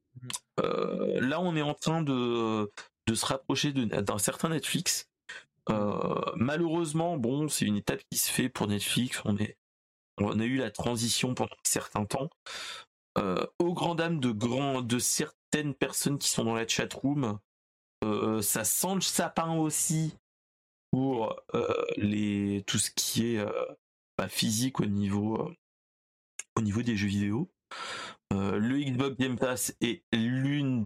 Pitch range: 105-135 Hz